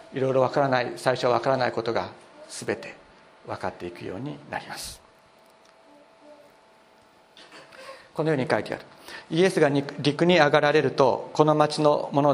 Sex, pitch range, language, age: male, 130-165 Hz, Japanese, 50-69